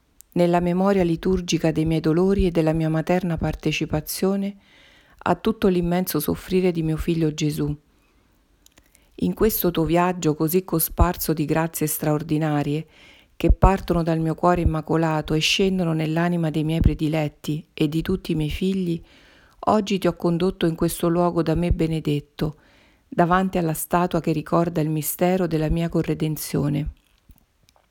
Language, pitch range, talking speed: Italian, 155-185 Hz, 140 wpm